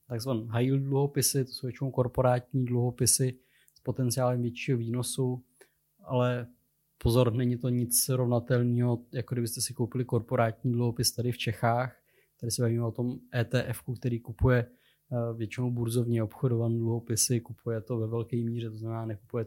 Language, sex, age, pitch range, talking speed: Czech, male, 20-39, 115-125 Hz, 150 wpm